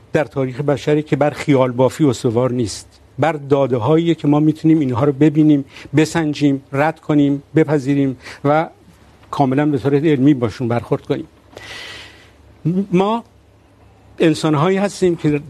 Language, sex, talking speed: Urdu, male, 140 wpm